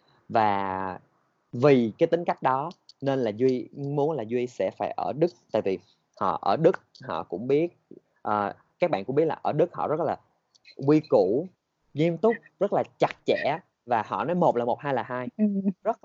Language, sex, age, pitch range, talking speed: Vietnamese, male, 20-39, 120-155 Hz, 195 wpm